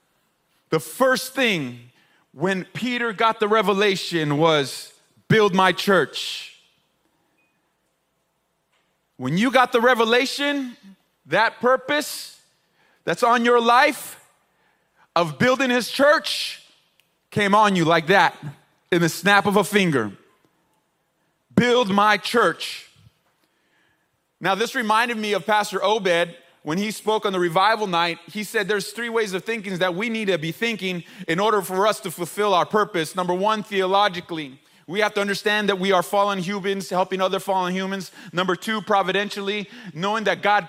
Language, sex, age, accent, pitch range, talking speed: English, male, 30-49, American, 180-215 Hz, 145 wpm